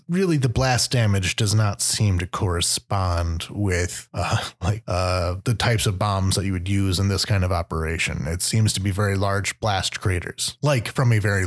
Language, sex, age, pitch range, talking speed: English, male, 30-49, 100-125 Hz, 200 wpm